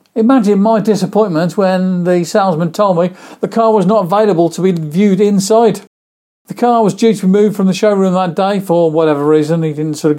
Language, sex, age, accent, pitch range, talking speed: English, male, 50-69, British, 170-220 Hz, 210 wpm